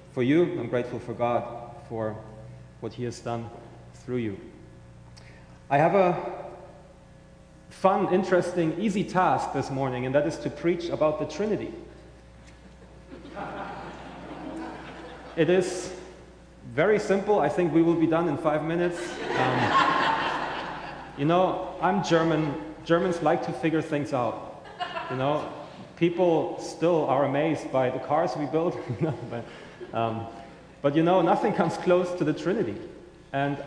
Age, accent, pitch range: 30-49, German, 125-180 Hz